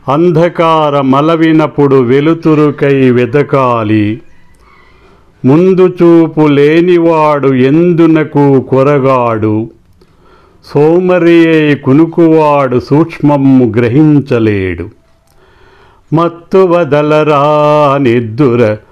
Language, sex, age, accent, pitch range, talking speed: Telugu, male, 50-69, native, 130-165 Hz, 45 wpm